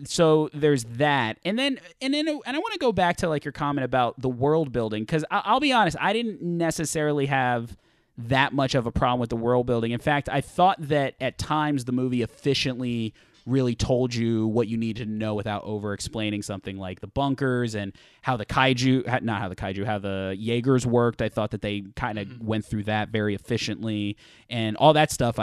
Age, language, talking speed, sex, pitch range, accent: 20-39, English, 210 wpm, male, 110-155 Hz, American